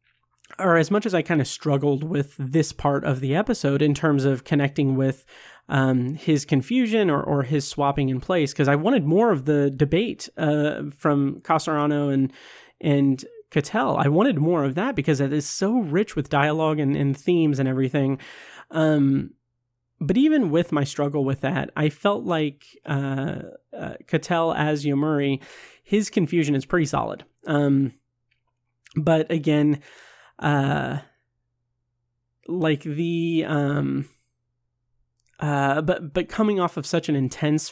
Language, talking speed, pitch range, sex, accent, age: English, 150 wpm, 140-165 Hz, male, American, 30-49